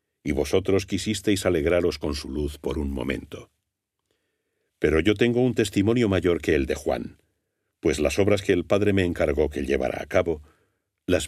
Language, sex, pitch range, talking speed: Spanish, male, 85-105 Hz, 175 wpm